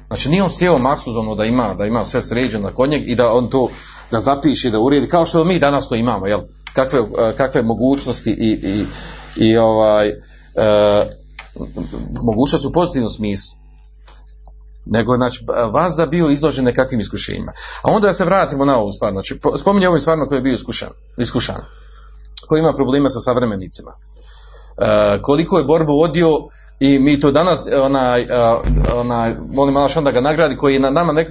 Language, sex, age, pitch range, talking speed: Croatian, male, 40-59, 110-155 Hz, 175 wpm